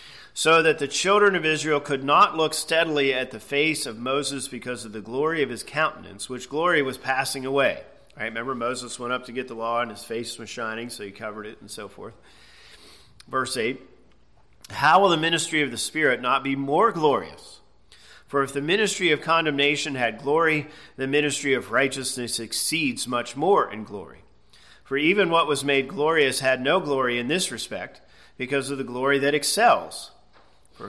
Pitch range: 120-150 Hz